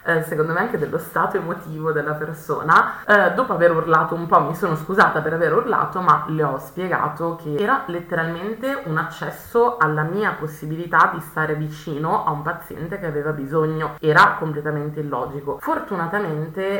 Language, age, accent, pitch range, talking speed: Italian, 20-39, native, 160-200 Hz, 165 wpm